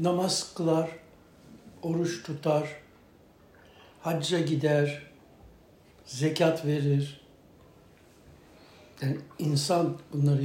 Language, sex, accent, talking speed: Turkish, male, native, 65 wpm